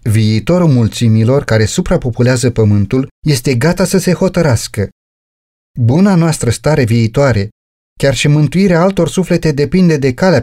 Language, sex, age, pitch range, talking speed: Romanian, male, 30-49, 115-165 Hz, 125 wpm